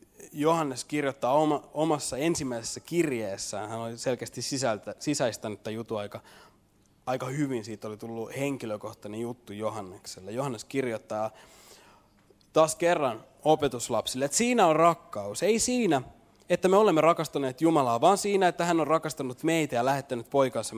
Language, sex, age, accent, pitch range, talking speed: Finnish, male, 20-39, native, 100-145 Hz, 135 wpm